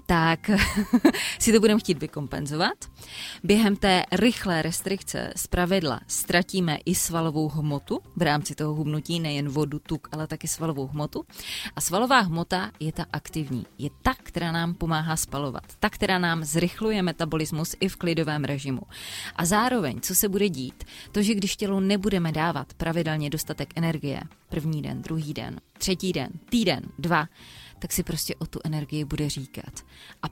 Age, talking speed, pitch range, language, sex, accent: 20-39, 160 wpm, 150-180 Hz, Czech, female, native